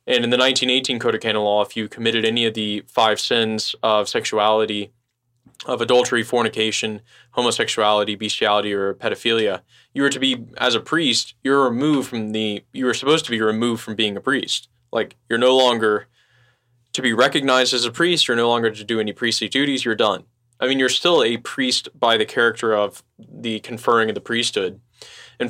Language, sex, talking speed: English, male, 195 wpm